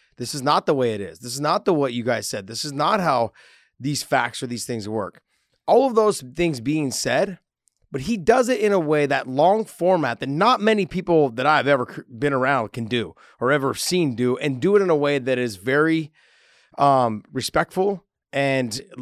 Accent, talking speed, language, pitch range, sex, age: American, 215 wpm, English, 125-160 Hz, male, 30-49